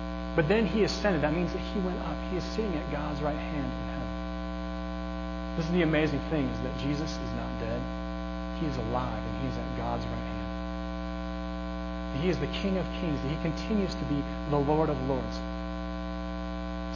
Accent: American